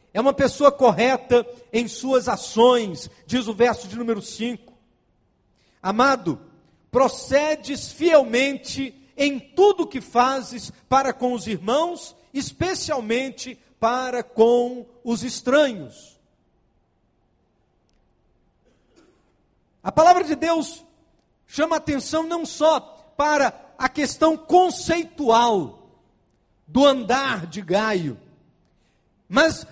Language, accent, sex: Portuguese, Brazilian, male